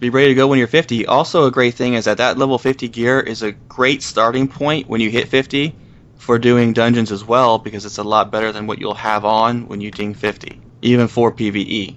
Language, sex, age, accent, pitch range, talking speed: English, male, 20-39, American, 110-130 Hz, 240 wpm